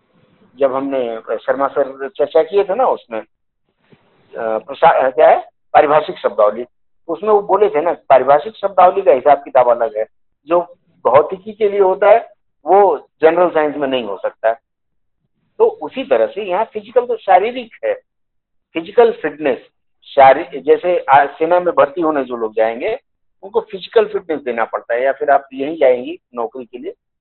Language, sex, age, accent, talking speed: Hindi, male, 50-69, native, 160 wpm